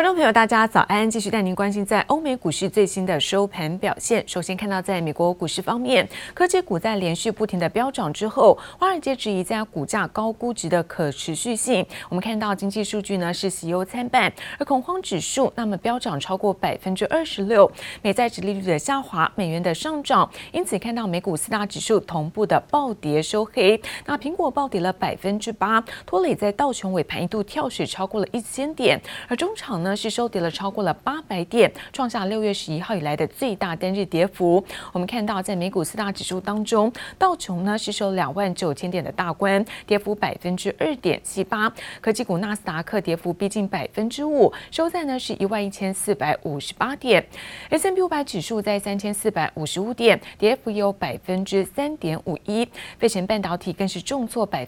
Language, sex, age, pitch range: Chinese, female, 30-49, 185-235 Hz